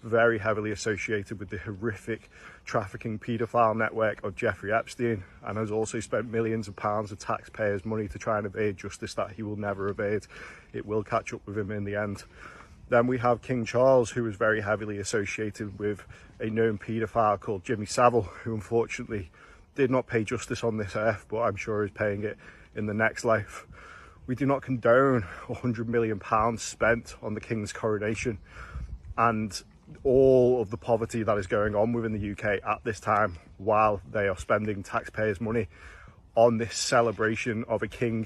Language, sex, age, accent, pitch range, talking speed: English, male, 30-49, British, 105-115 Hz, 185 wpm